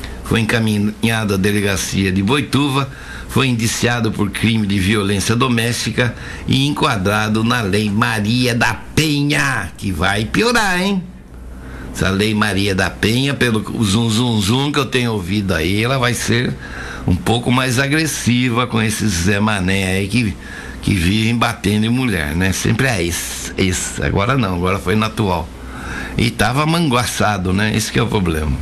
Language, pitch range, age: Portuguese, 95-125 Hz, 60-79